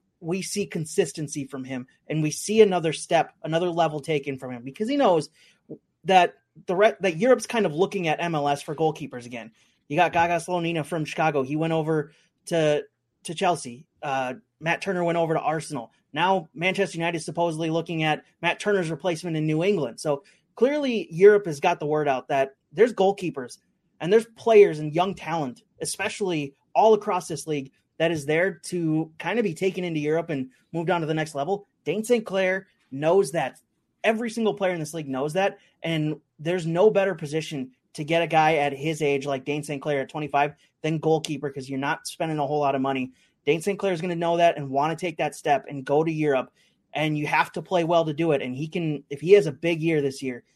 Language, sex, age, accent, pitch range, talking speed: English, male, 30-49, American, 145-180 Hz, 215 wpm